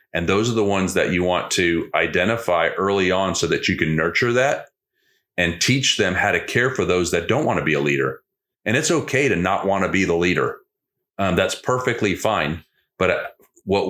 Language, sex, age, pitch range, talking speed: English, male, 40-59, 90-105 Hz, 210 wpm